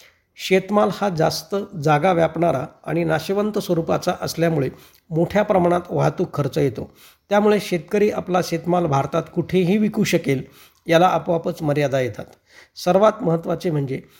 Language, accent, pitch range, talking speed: Marathi, native, 155-195 Hz, 100 wpm